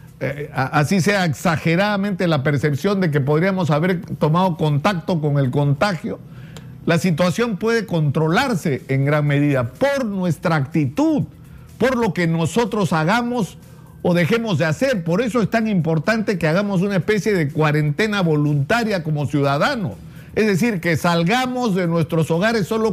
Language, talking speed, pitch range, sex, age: Spanish, 145 wpm, 155-210 Hz, male, 50-69